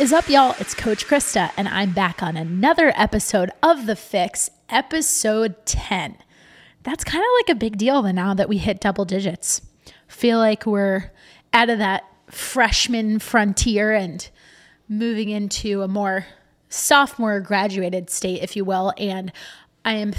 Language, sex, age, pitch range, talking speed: English, female, 20-39, 195-230 Hz, 160 wpm